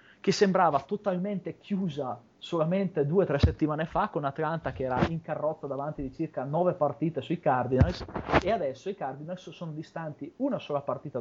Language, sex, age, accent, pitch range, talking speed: Italian, male, 30-49, native, 145-185 Hz, 170 wpm